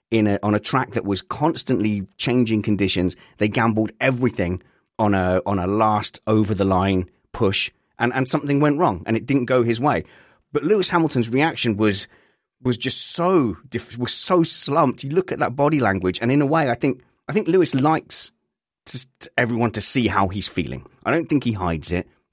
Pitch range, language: 100-130 Hz, English